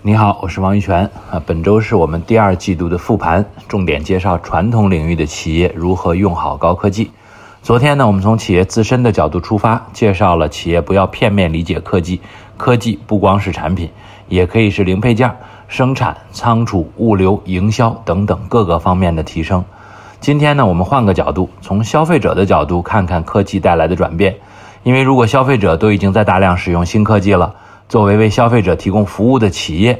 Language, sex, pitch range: English, male, 95-115 Hz